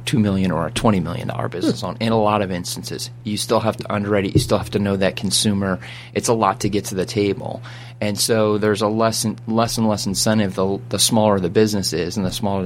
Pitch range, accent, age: 95-115 Hz, American, 30-49